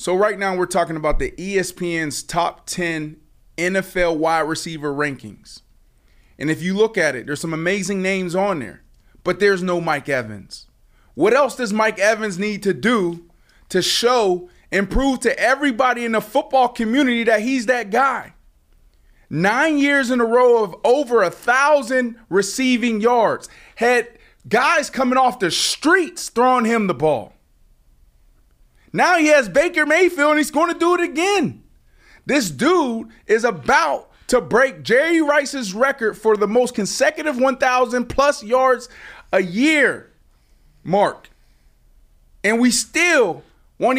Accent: American